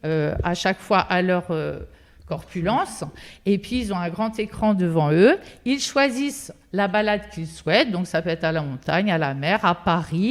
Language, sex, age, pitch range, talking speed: French, female, 50-69, 180-230 Hz, 205 wpm